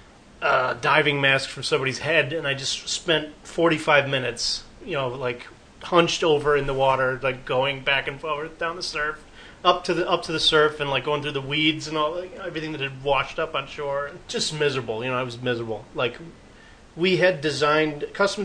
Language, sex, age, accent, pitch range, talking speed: English, male, 30-49, American, 130-165 Hz, 205 wpm